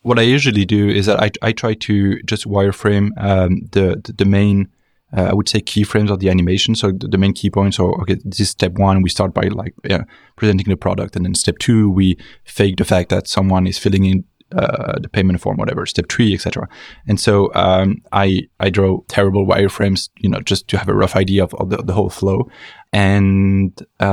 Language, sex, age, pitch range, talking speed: English, male, 20-39, 95-110 Hz, 225 wpm